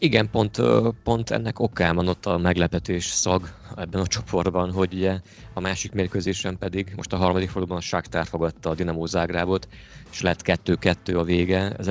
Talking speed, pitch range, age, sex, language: 165 wpm, 85-95 Hz, 30-49, male, Hungarian